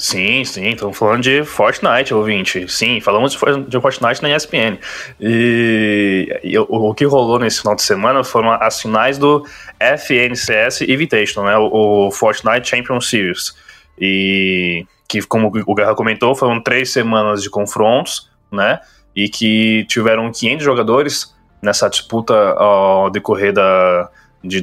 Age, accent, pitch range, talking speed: 20-39, Brazilian, 105-125 Hz, 140 wpm